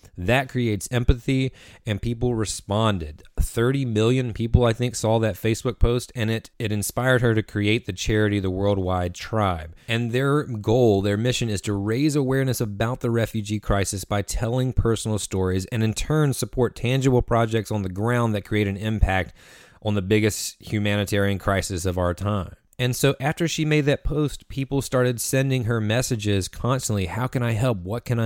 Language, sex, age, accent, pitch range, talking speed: English, male, 30-49, American, 95-120 Hz, 180 wpm